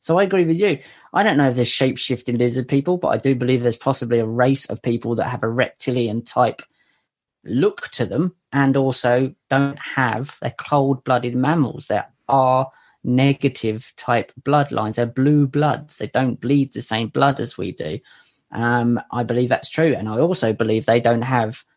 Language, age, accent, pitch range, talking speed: English, 20-39, British, 120-140 Hz, 180 wpm